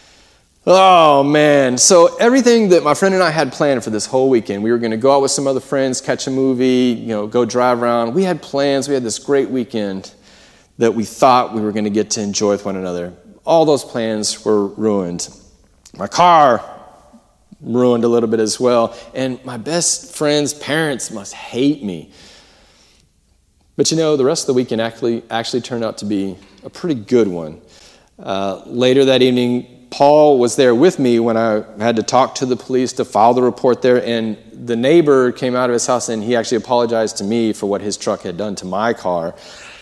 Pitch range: 105-130 Hz